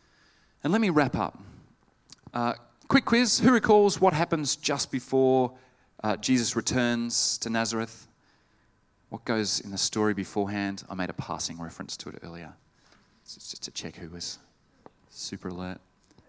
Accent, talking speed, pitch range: Australian, 150 wpm, 105-135 Hz